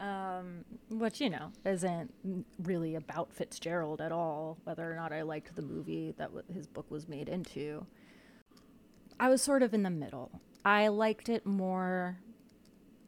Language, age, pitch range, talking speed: English, 30-49, 175-225 Hz, 155 wpm